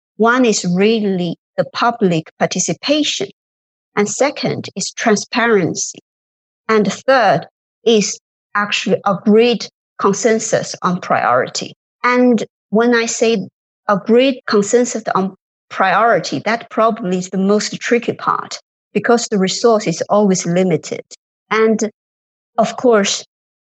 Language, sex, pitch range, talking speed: English, male, 190-235 Hz, 105 wpm